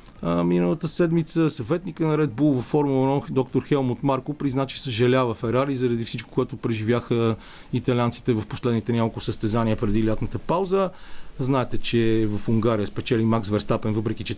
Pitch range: 115-150 Hz